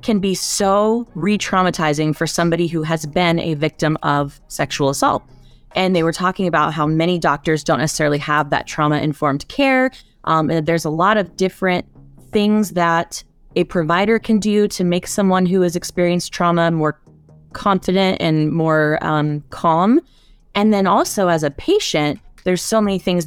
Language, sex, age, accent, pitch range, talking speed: English, female, 20-39, American, 155-200 Hz, 160 wpm